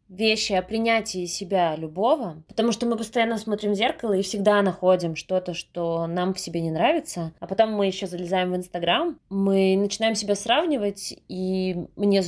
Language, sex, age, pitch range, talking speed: Russian, female, 20-39, 180-210 Hz, 170 wpm